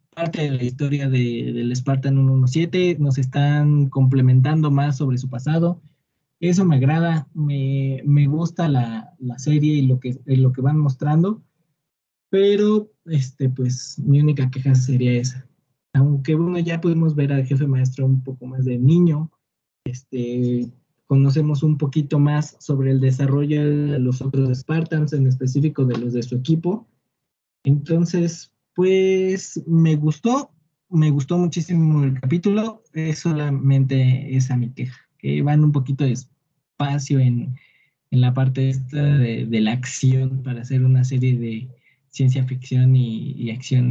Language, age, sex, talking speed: Spanish, 20-39, male, 150 wpm